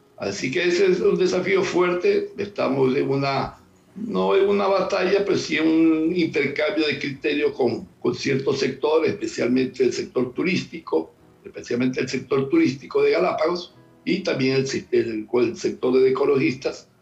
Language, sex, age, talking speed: Spanish, male, 60-79, 150 wpm